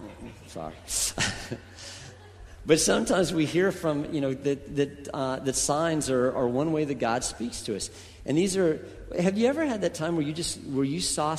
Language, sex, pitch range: English, male, 120-155 Hz